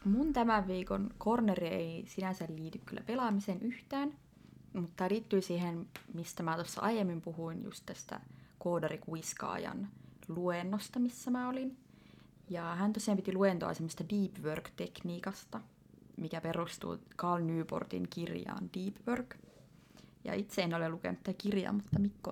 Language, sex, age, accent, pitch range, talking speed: Finnish, female, 20-39, native, 165-205 Hz, 130 wpm